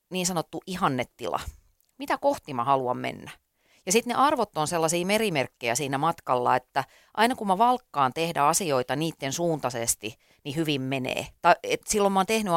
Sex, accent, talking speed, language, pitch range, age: female, native, 165 wpm, Finnish, 135-175 Hz, 30-49